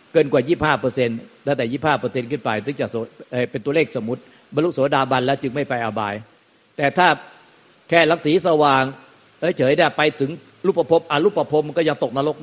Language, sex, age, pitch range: Thai, male, 60-79, 125-155 Hz